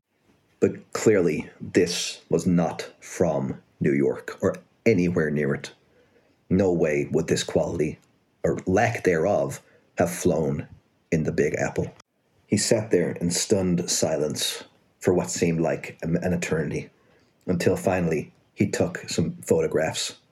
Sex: male